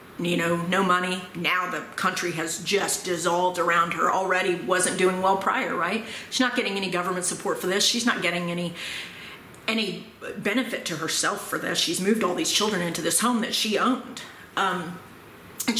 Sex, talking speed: female, 185 wpm